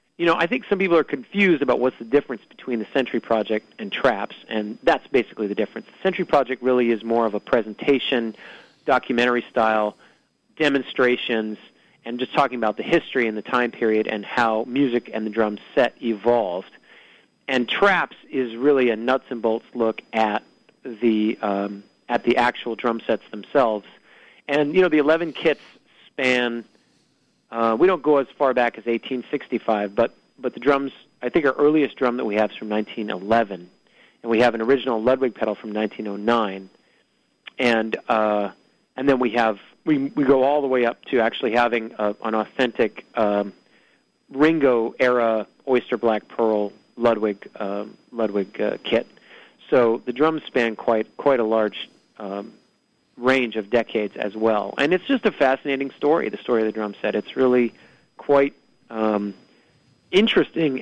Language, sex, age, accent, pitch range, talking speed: English, male, 40-59, American, 110-135 Hz, 170 wpm